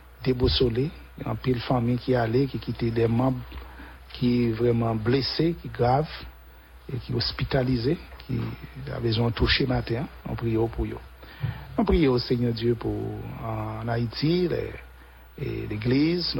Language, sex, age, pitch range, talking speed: English, male, 60-79, 105-130 Hz, 155 wpm